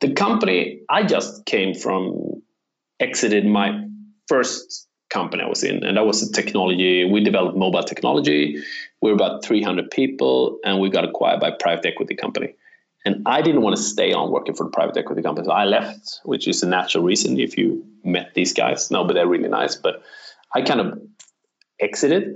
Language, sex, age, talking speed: English, male, 30-49, 195 wpm